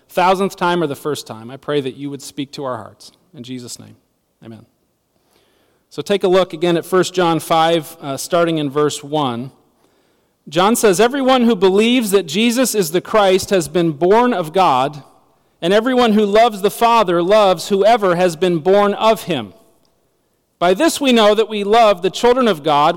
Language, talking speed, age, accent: English, 190 wpm, 40-59, American